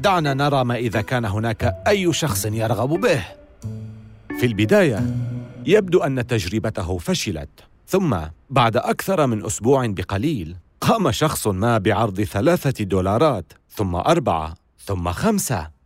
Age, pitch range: 40-59, 100-145 Hz